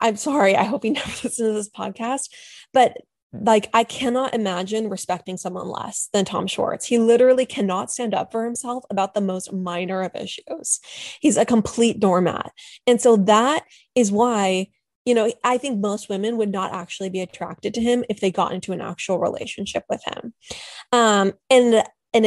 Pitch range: 190-230 Hz